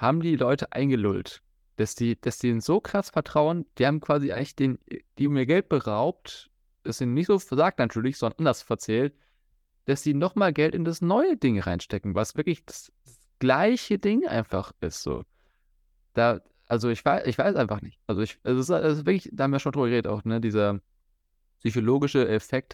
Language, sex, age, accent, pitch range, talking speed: German, male, 20-39, German, 110-145 Hz, 190 wpm